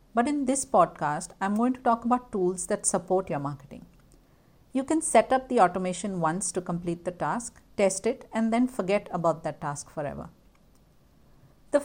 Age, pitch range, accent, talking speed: 50-69, 175-230 Hz, Indian, 175 wpm